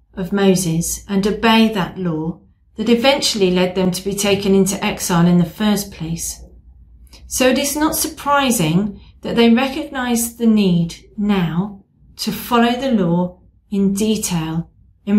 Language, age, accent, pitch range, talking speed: English, 40-59, British, 165-235 Hz, 145 wpm